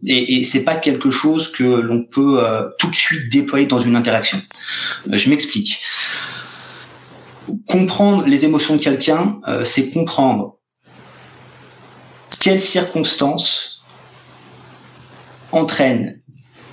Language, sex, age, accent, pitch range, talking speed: French, male, 30-49, French, 130-185 Hz, 110 wpm